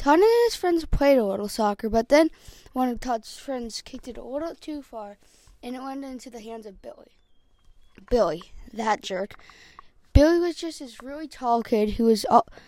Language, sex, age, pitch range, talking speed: English, female, 10-29, 220-275 Hz, 205 wpm